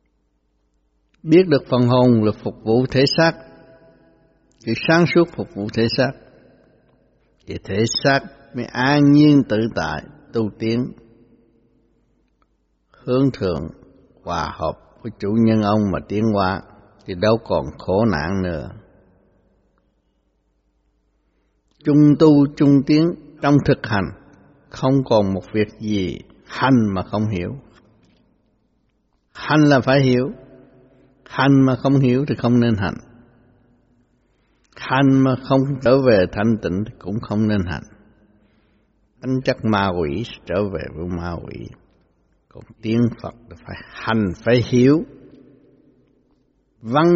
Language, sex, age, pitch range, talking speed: Vietnamese, male, 60-79, 100-135 Hz, 130 wpm